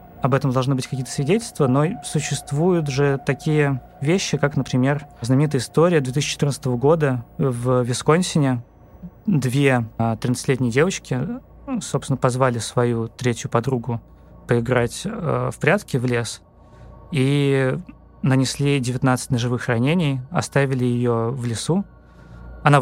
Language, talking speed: Russian, 110 wpm